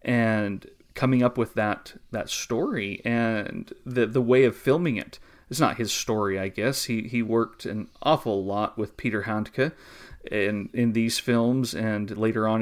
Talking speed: 170 wpm